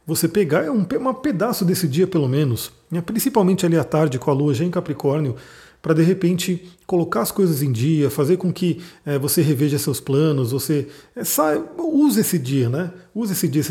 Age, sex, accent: 40-59, male, Brazilian